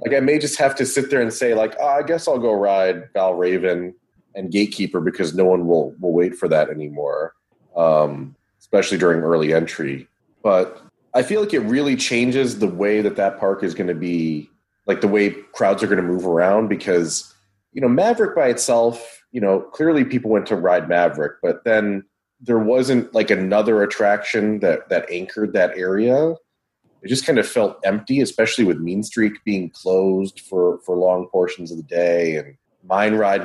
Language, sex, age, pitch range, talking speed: English, male, 30-49, 90-115 Hz, 195 wpm